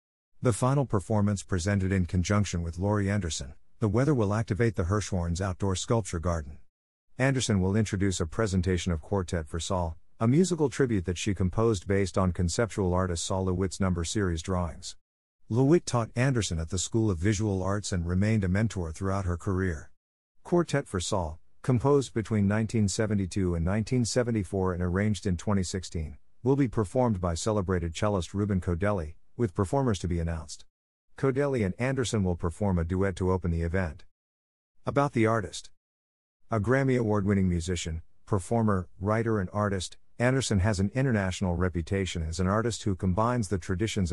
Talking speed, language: 160 wpm, English